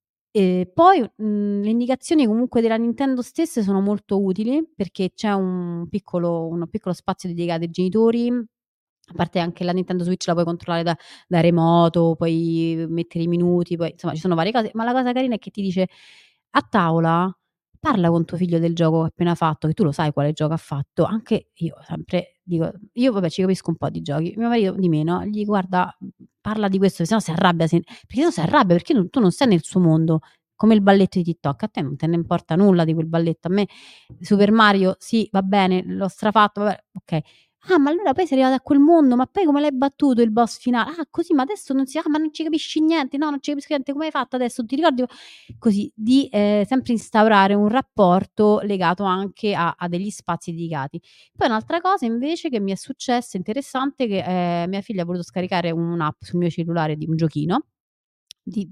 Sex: female